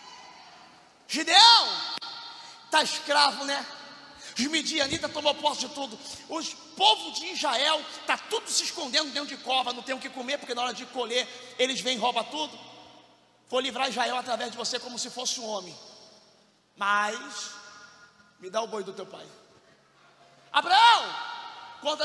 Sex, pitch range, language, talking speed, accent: male, 245-335 Hz, Portuguese, 155 wpm, Brazilian